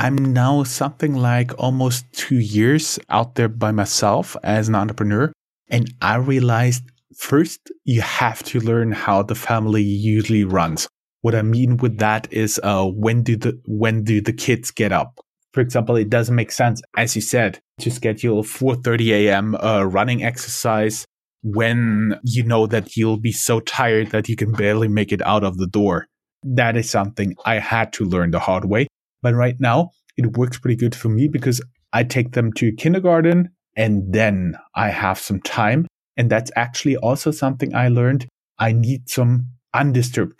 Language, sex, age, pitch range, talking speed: English, male, 20-39, 105-125 Hz, 175 wpm